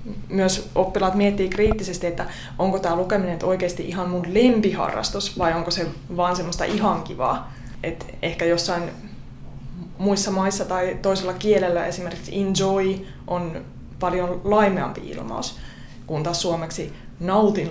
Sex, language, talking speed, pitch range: female, Finnish, 125 wpm, 170-195 Hz